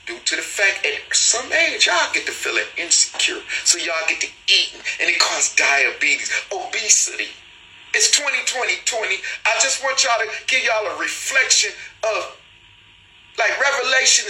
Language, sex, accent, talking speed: English, male, American, 150 wpm